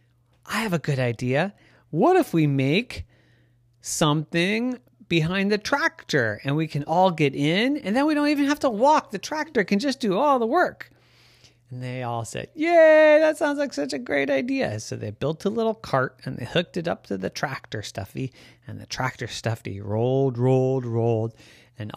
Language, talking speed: English, 190 wpm